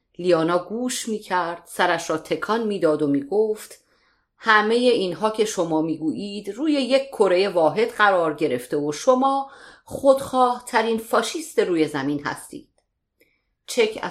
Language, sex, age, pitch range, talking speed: Persian, female, 40-59, 175-260 Hz, 125 wpm